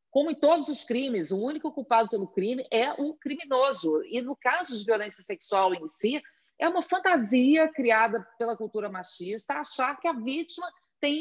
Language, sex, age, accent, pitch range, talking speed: Portuguese, female, 40-59, Brazilian, 200-280 Hz, 175 wpm